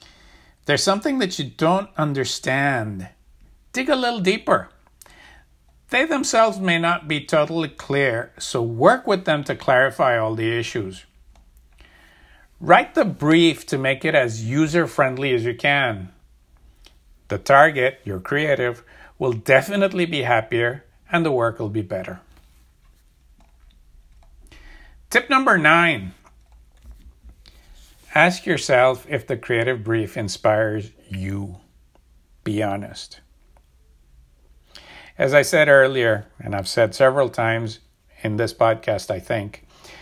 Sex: male